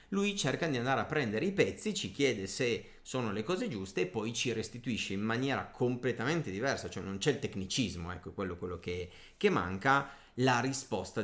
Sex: male